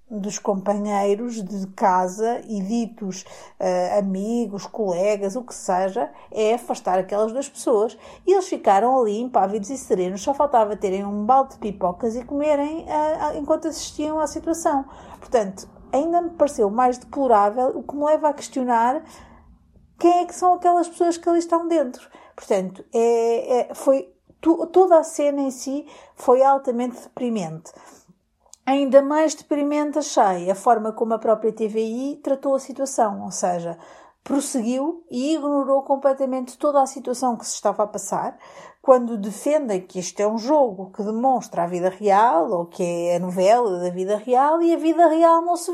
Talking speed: 165 wpm